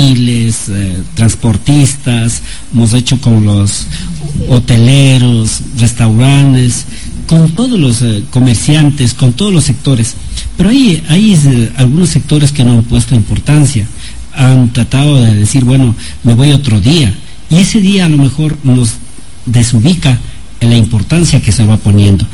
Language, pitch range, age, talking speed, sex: Spanish, 115-145 Hz, 50-69, 130 wpm, male